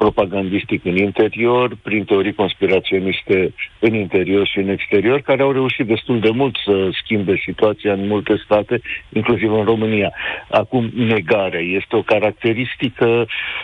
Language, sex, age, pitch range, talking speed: Romanian, male, 50-69, 95-115 Hz, 140 wpm